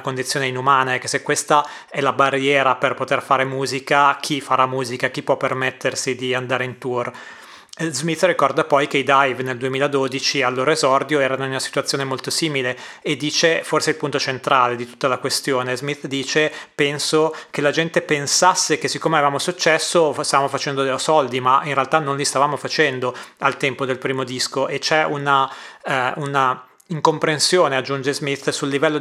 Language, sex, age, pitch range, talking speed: Italian, male, 30-49, 130-150 Hz, 180 wpm